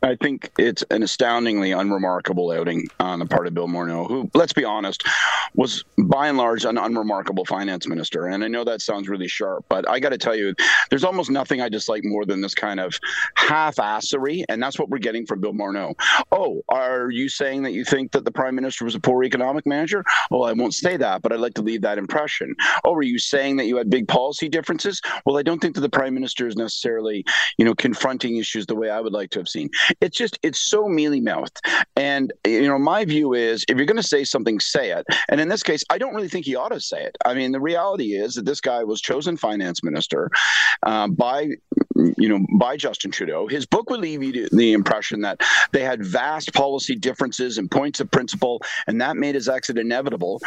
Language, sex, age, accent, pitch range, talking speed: English, male, 40-59, American, 115-150 Hz, 225 wpm